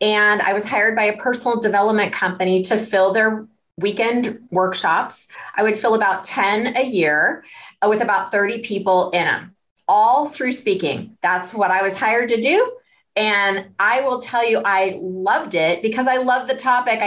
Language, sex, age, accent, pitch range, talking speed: English, female, 30-49, American, 205-275 Hz, 175 wpm